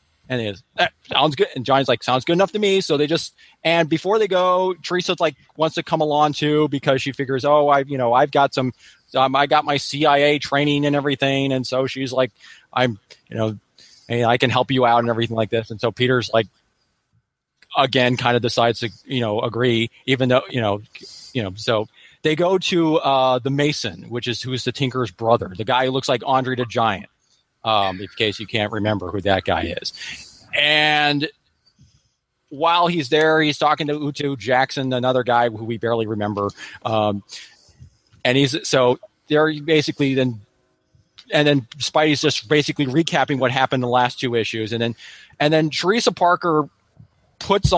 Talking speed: 190 wpm